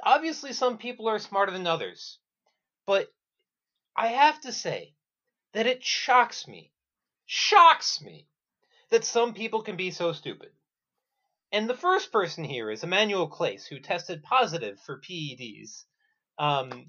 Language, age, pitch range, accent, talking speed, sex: English, 30-49, 175-280 Hz, American, 140 wpm, male